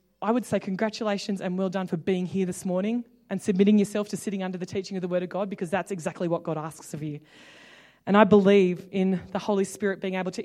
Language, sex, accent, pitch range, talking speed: English, female, Australian, 175-205 Hz, 245 wpm